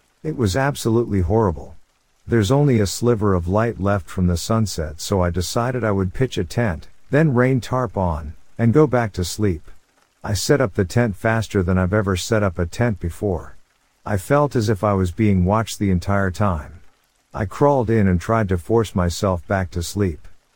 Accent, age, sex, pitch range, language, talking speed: American, 50-69, male, 90-115 Hz, English, 195 wpm